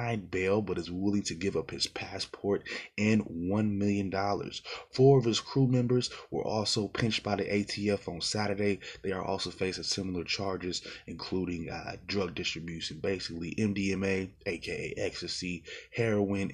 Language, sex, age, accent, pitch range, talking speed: English, male, 20-39, American, 90-100 Hz, 150 wpm